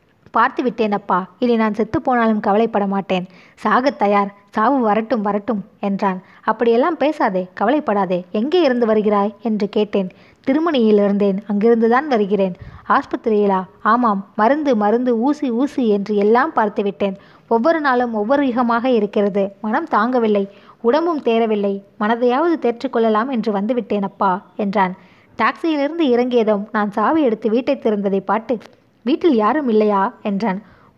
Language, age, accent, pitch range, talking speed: Tamil, 20-39, native, 205-250 Hz, 120 wpm